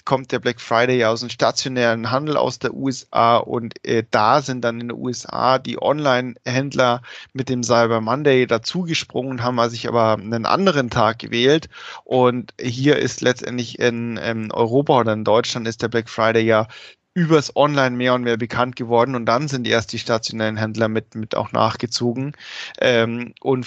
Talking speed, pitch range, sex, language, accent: 175 wpm, 115-135 Hz, male, German, German